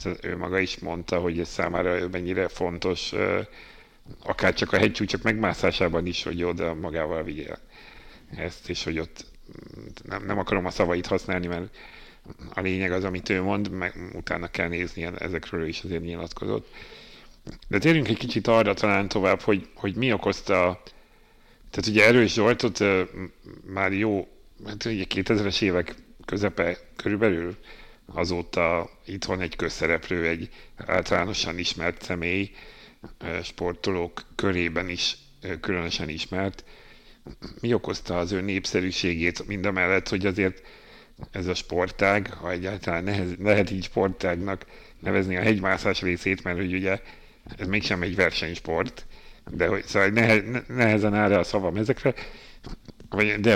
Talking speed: 130 wpm